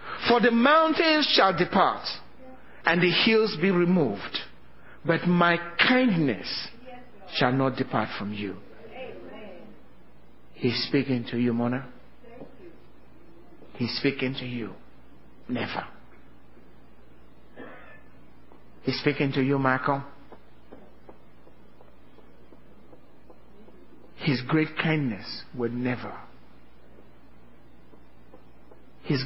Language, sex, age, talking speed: English, male, 60-79, 80 wpm